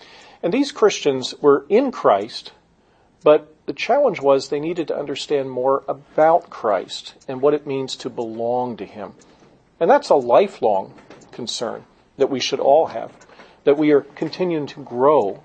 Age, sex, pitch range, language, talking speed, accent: 40-59, male, 115-150 Hz, English, 160 wpm, American